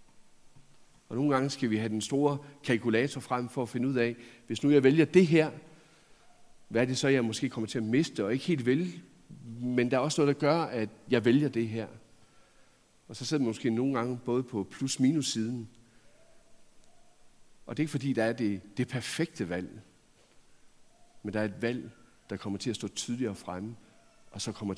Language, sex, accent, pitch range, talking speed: Danish, male, native, 115-155 Hz, 200 wpm